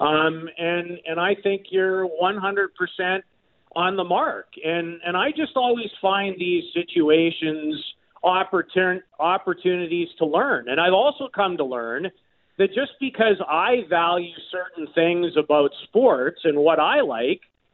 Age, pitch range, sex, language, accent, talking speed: 40-59, 175-235 Hz, male, English, American, 140 wpm